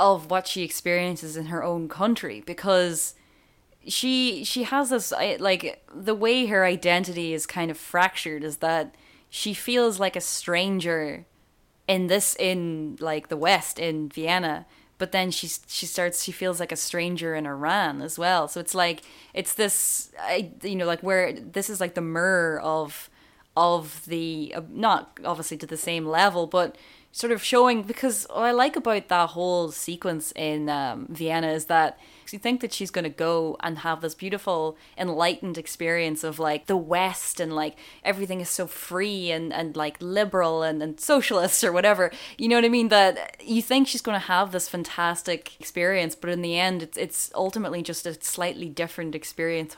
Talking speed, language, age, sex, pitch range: 180 wpm, English, 10-29, female, 165-195 Hz